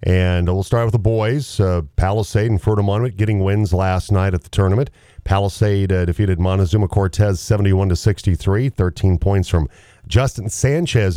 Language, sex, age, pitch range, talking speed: English, male, 40-59, 95-110 Hz, 160 wpm